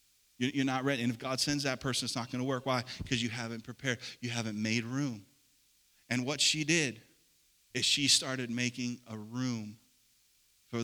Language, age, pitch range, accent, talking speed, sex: English, 40-59, 110-135 Hz, American, 190 wpm, male